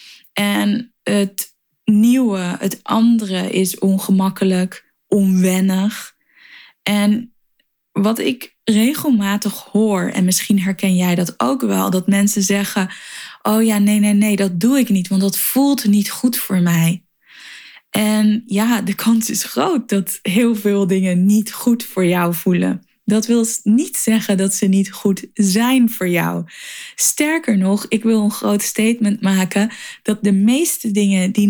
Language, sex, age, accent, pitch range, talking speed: Dutch, female, 10-29, Dutch, 190-220 Hz, 150 wpm